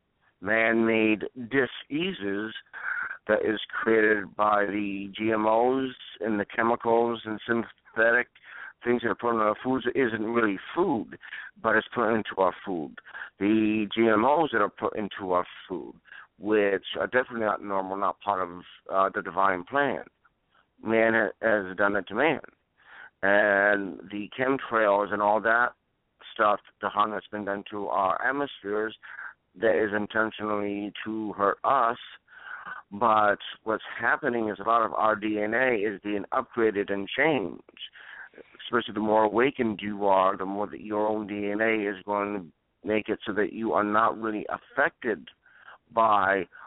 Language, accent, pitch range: English, American, 105-115 Hz